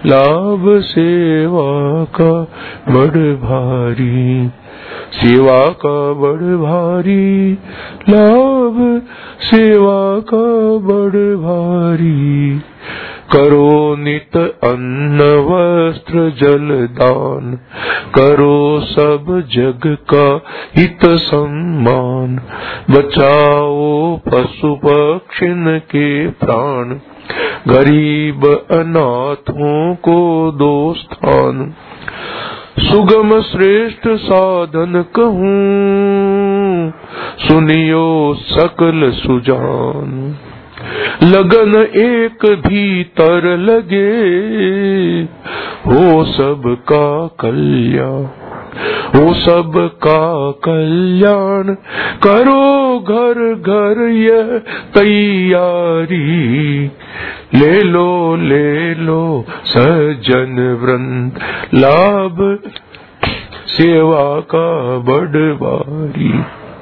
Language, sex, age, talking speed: Hindi, male, 50-69, 65 wpm